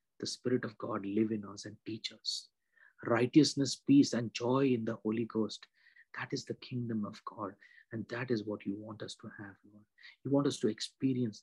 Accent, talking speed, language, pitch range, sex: Indian, 205 wpm, English, 105-125 Hz, male